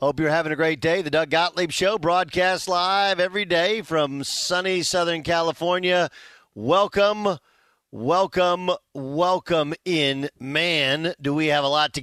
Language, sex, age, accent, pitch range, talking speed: English, male, 40-59, American, 130-175 Hz, 145 wpm